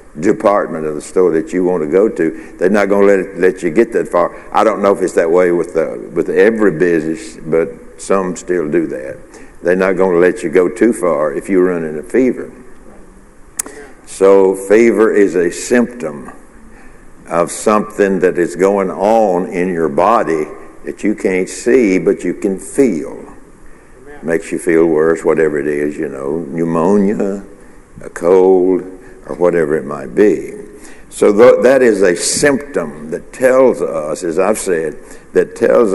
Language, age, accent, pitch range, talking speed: English, 60-79, American, 90-120 Hz, 175 wpm